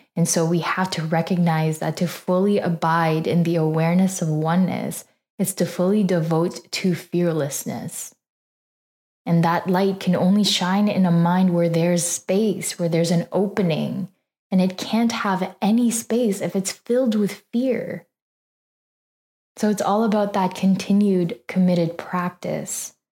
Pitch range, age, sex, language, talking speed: 170-195 Hz, 10-29, female, English, 145 wpm